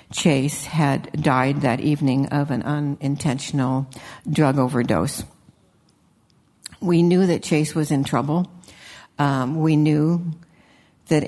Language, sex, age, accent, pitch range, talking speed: English, female, 60-79, American, 140-165 Hz, 110 wpm